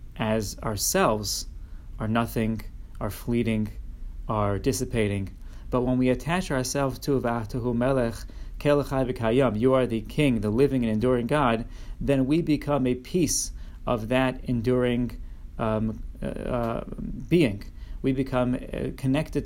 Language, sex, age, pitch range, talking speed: English, male, 30-49, 110-130 Hz, 115 wpm